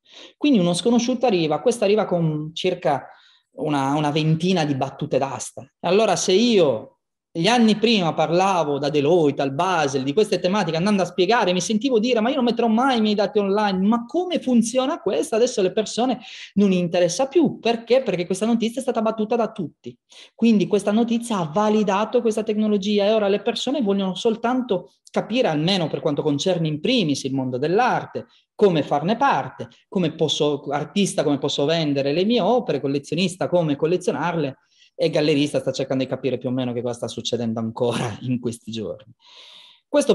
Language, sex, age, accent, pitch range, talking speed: Italian, male, 30-49, native, 150-225 Hz, 180 wpm